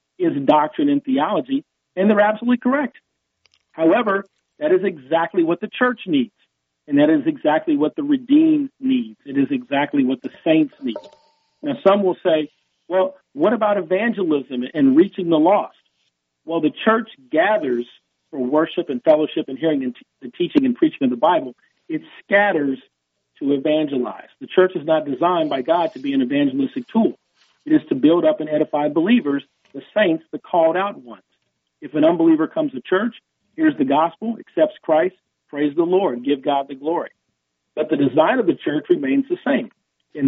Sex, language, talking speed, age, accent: male, English, 175 wpm, 50-69, American